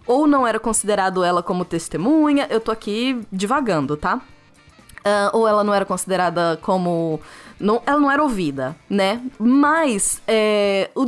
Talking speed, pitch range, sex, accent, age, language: 135 wpm, 190-240 Hz, female, Brazilian, 20-39, Portuguese